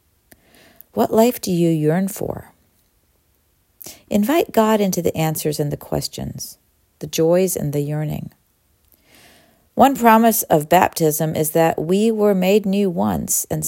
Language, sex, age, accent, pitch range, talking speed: English, female, 40-59, American, 130-190 Hz, 135 wpm